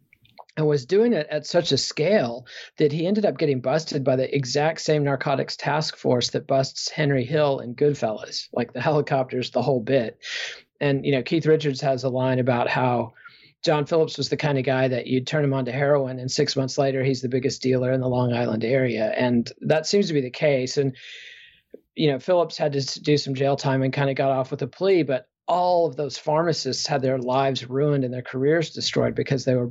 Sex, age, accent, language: male, 40-59, American, English